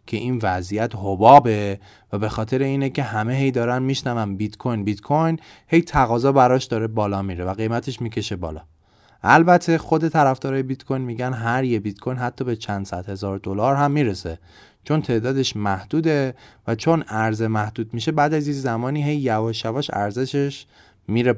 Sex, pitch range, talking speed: male, 100-160 Hz, 175 wpm